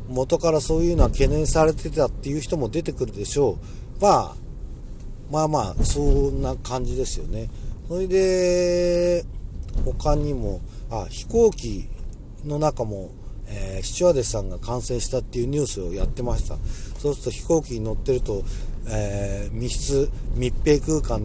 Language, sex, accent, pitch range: Japanese, male, native, 105-155 Hz